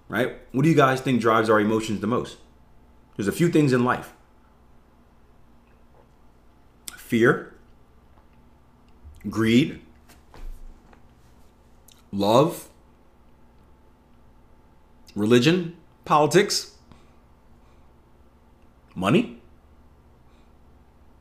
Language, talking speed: English, 65 wpm